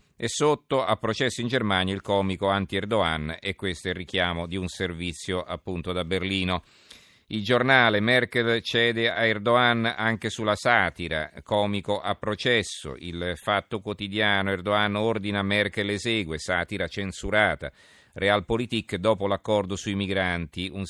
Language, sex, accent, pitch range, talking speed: Italian, male, native, 90-110 Hz, 140 wpm